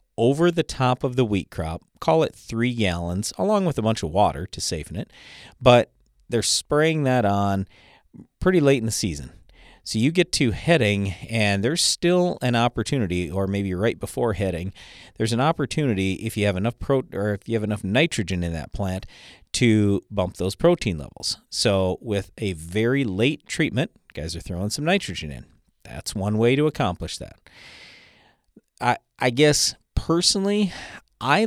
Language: English